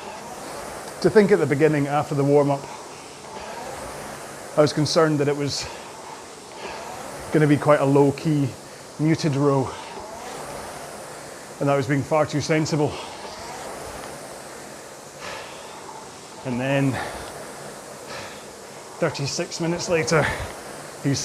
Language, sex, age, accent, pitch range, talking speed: English, male, 30-49, British, 140-160 Hz, 105 wpm